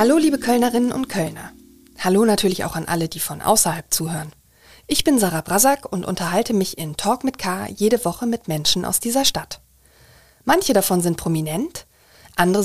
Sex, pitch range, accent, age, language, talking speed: female, 175-230 Hz, German, 40-59, German, 175 wpm